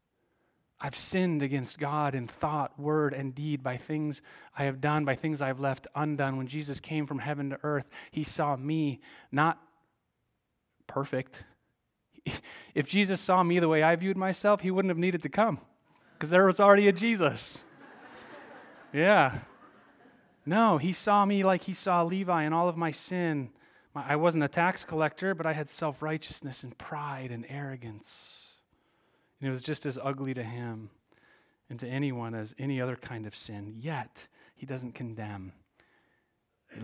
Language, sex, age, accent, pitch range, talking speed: English, male, 30-49, American, 125-170 Hz, 165 wpm